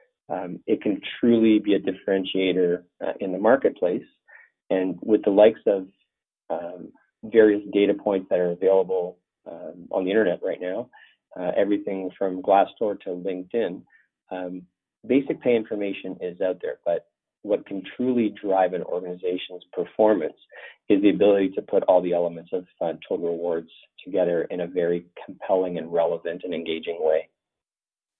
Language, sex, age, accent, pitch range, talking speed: English, male, 40-59, American, 90-105 Hz, 155 wpm